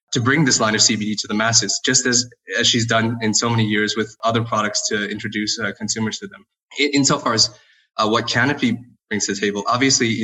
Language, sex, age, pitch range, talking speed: English, male, 20-39, 105-120 Hz, 240 wpm